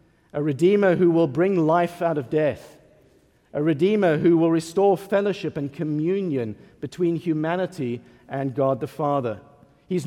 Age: 50-69